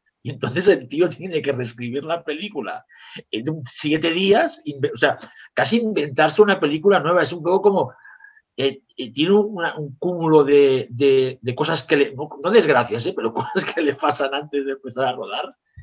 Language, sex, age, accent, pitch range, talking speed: Spanish, male, 50-69, Spanish, 125-170 Hz, 185 wpm